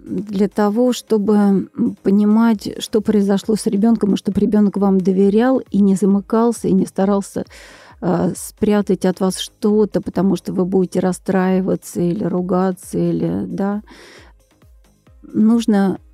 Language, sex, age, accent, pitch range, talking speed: Russian, female, 40-59, native, 190-230 Hz, 125 wpm